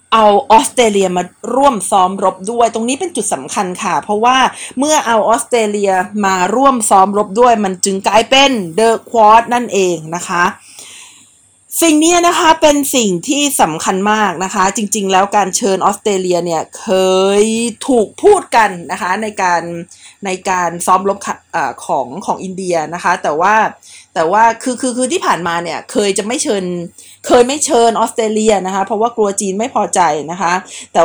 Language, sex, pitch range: Thai, female, 185-240 Hz